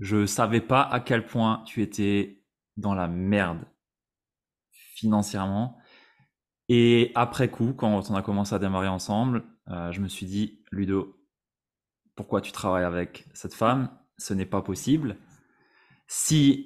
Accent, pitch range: French, 95-120 Hz